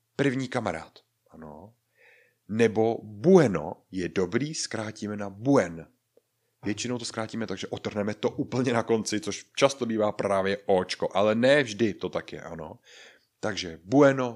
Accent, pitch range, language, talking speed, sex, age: native, 100-135 Hz, Czech, 140 wpm, male, 30-49